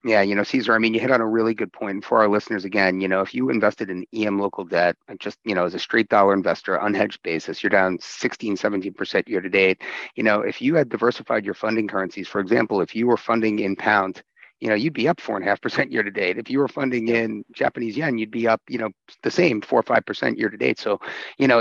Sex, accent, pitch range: male, American, 100-115 Hz